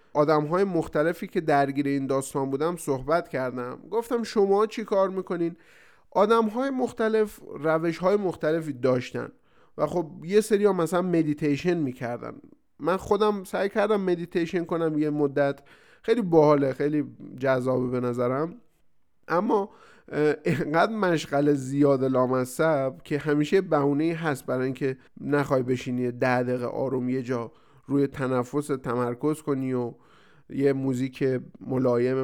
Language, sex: Persian, male